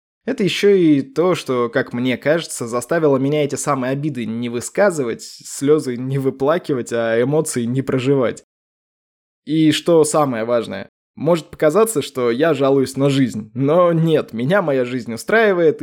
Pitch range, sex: 130-160 Hz, male